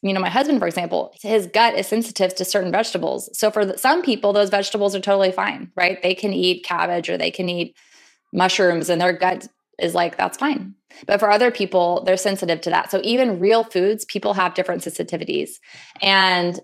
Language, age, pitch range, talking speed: English, 20-39, 180-220 Hz, 200 wpm